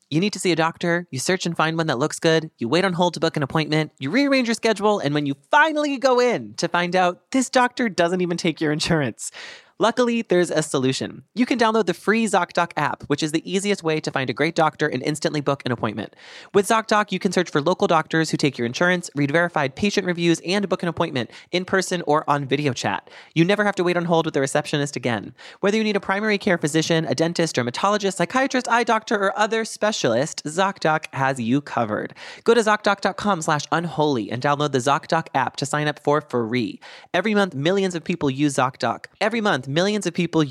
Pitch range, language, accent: 140-195 Hz, English, American